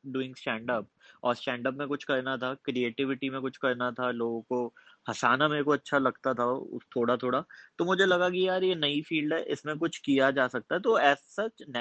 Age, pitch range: 20-39, 125-155 Hz